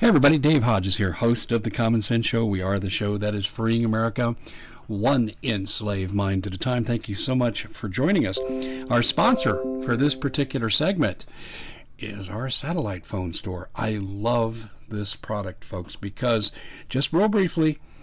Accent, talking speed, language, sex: American, 175 wpm, English, male